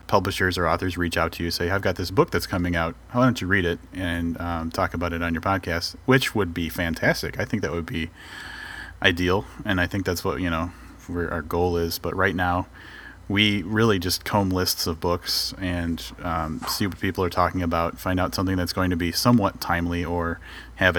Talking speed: 225 wpm